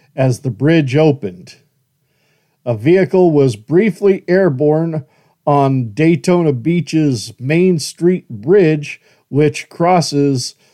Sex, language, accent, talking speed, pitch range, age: male, English, American, 95 wpm, 140-170 Hz, 50-69